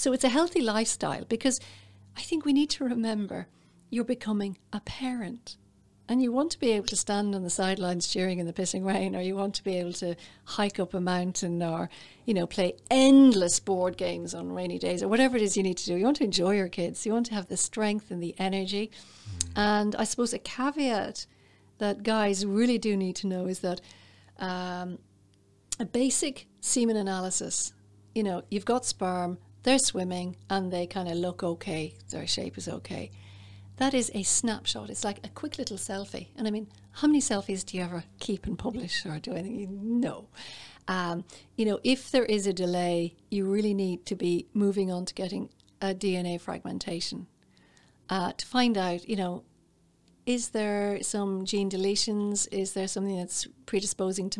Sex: female